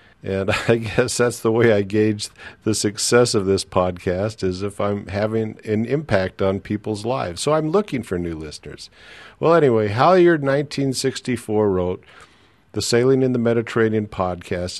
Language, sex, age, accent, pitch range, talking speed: English, male, 50-69, American, 100-120 Hz, 155 wpm